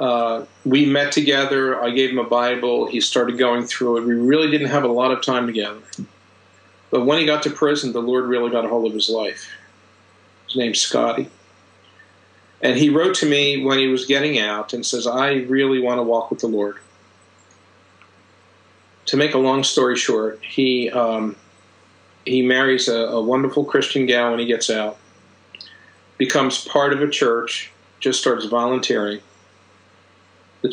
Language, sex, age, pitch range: English, male, 50-69, 100-130 Hz